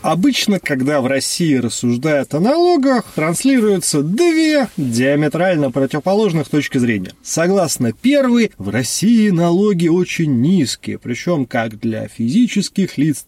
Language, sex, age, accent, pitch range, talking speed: Russian, male, 30-49, native, 140-220 Hz, 115 wpm